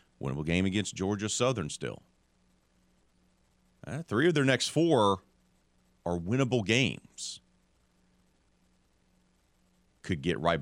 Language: English